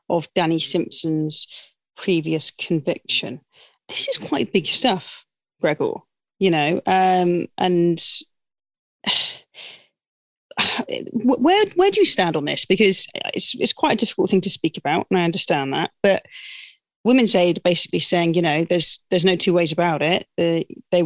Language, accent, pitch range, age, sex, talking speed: English, British, 165-195 Hz, 20-39, female, 150 wpm